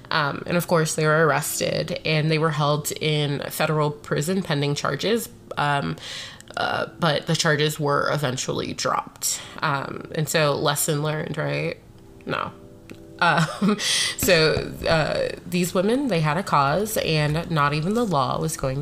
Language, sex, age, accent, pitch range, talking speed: English, female, 20-39, American, 150-185 Hz, 150 wpm